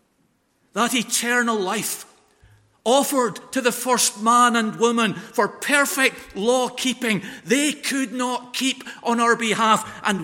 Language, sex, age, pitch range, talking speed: English, male, 50-69, 185-230 Hz, 130 wpm